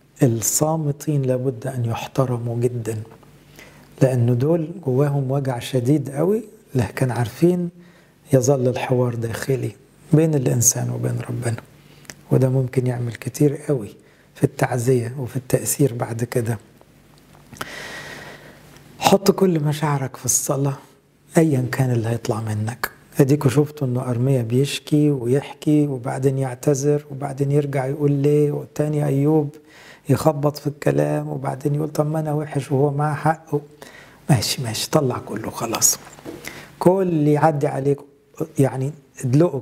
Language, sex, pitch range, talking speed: English, male, 125-150 Hz, 120 wpm